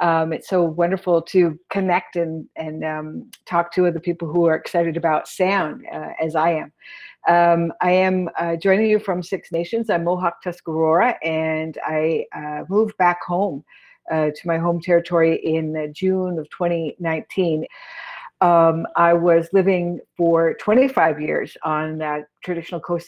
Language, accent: English, American